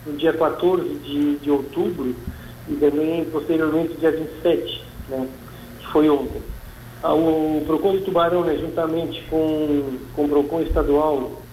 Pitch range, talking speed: 145-170 Hz, 145 wpm